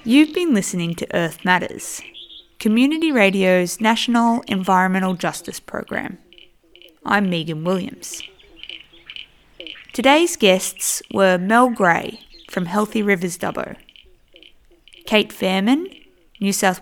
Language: English